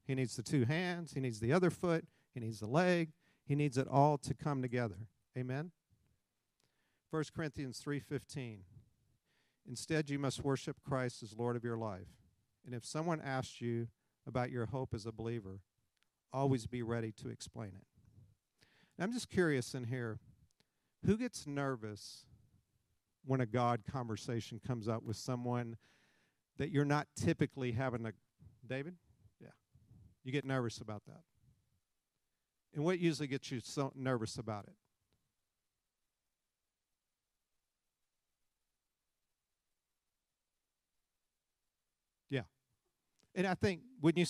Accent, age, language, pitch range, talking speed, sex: American, 50-69, English, 115-150 Hz, 130 wpm, male